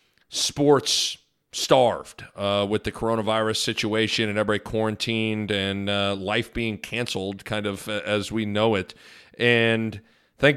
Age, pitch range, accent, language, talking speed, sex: 40-59, 110-125 Hz, American, English, 135 wpm, male